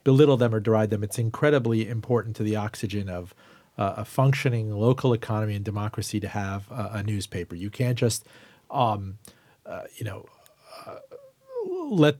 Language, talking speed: English, 160 wpm